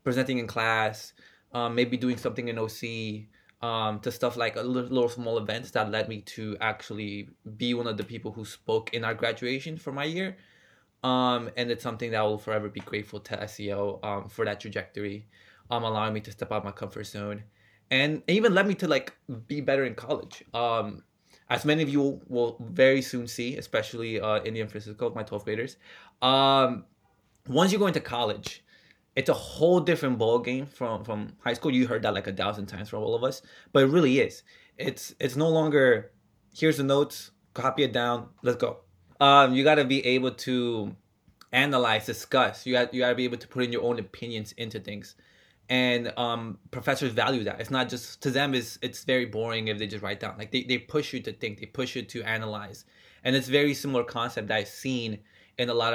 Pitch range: 110-130 Hz